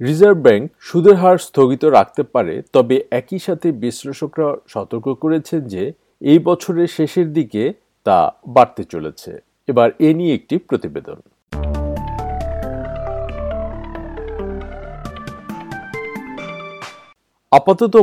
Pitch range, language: 120-170 Hz, Bengali